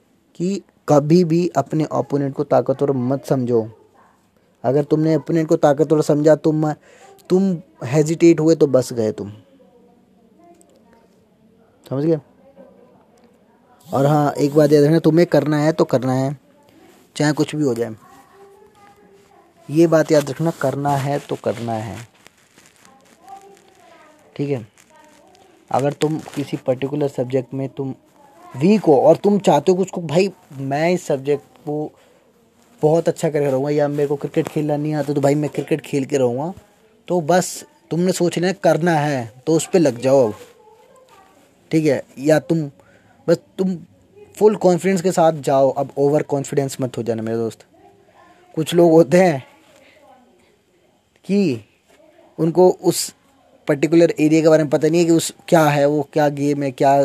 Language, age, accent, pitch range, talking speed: Hindi, 20-39, native, 140-185 Hz, 155 wpm